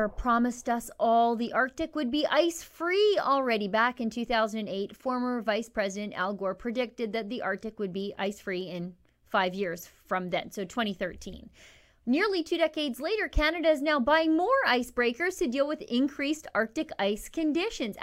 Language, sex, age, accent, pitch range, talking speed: English, female, 30-49, American, 225-315 Hz, 165 wpm